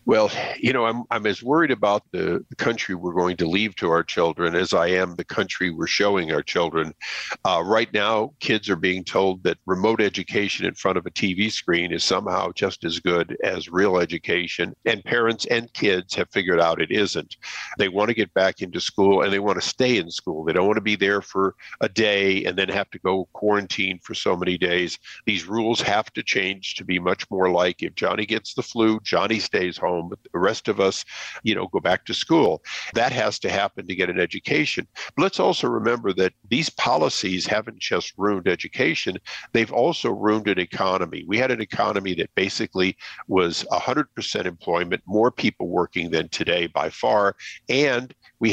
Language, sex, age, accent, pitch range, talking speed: English, male, 50-69, American, 90-110 Hz, 205 wpm